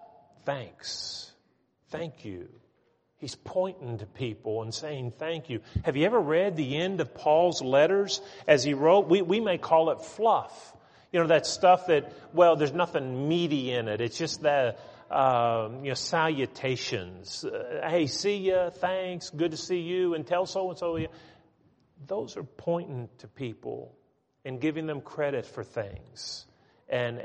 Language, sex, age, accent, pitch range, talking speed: English, male, 40-59, American, 125-165 Hz, 155 wpm